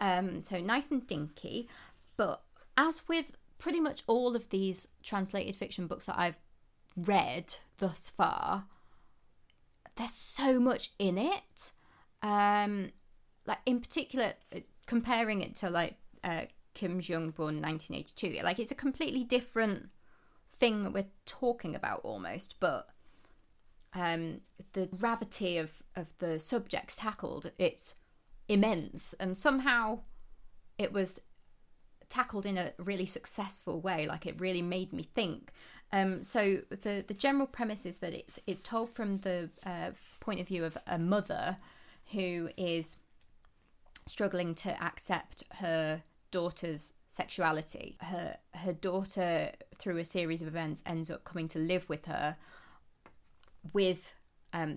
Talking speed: 135 wpm